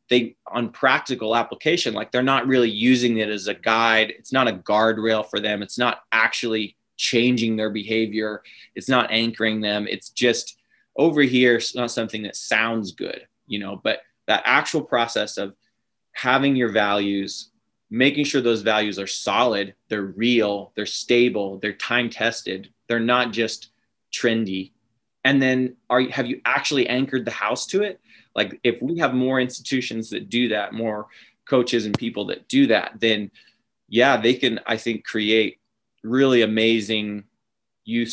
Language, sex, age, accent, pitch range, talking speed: English, male, 20-39, American, 110-125 Hz, 160 wpm